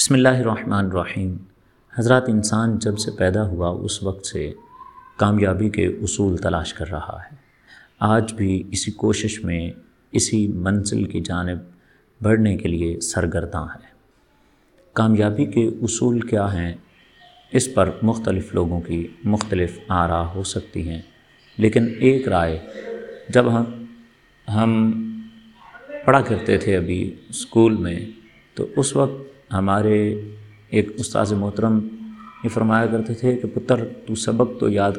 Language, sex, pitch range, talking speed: Urdu, male, 95-120 Hz, 130 wpm